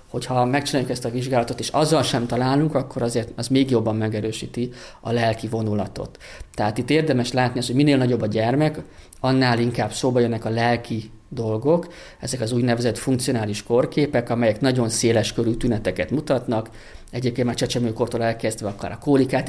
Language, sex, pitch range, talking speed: Hungarian, male, 105-125 Hz, 165 wpm